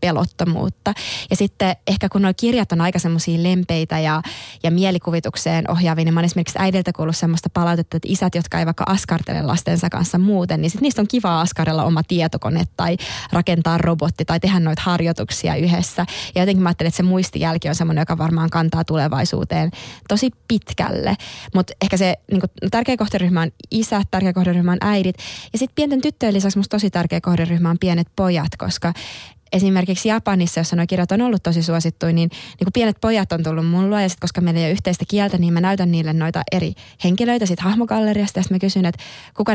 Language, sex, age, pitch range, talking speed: Finnish, female, 20-39, 165-195 Hz, 195 wpm